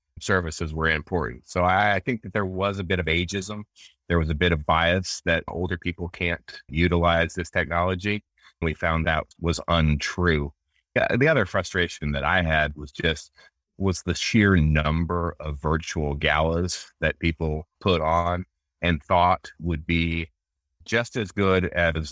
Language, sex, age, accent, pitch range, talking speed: English, male, 30-49, American, 80-90 Hz, 155 wpm